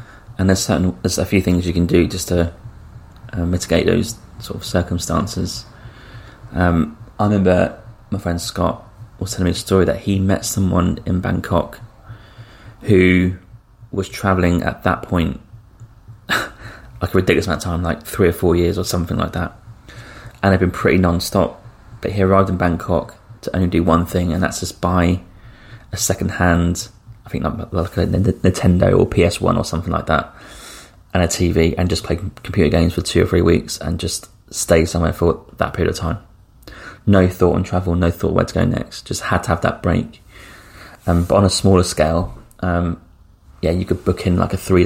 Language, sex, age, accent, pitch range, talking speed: English, male, 20-39, British, 90-110 Hz, 185 wpm